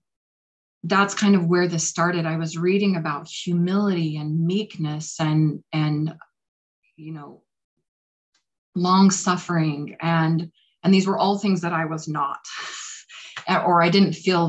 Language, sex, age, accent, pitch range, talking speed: English, female, 30-49, American, 155-180 Hz, 135 wpm